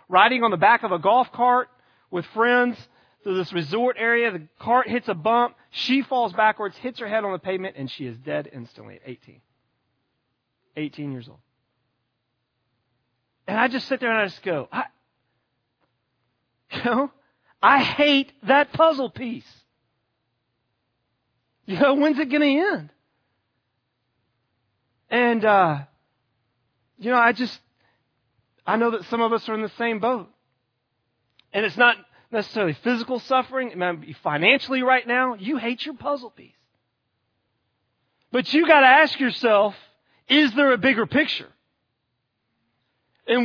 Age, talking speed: 40-59, 150 wpm